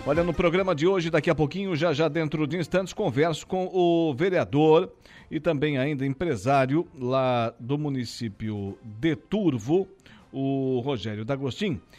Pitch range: 110-160 Hz